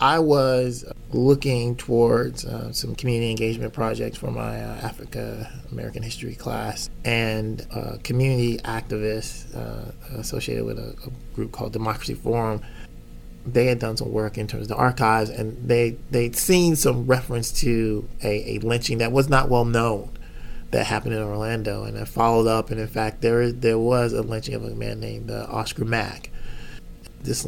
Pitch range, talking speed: 110-120 Hz, 170 wpm